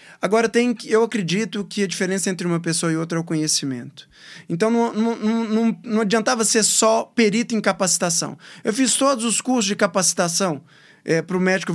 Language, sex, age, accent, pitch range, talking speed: Portuguese, male, 20-39, Brazilian, 180-225 Hz, 185 wpm